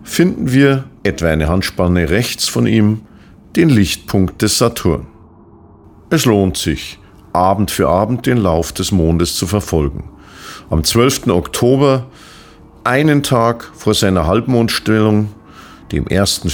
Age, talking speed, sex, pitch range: 50-69, 125 wpm, male, 90-120 Hz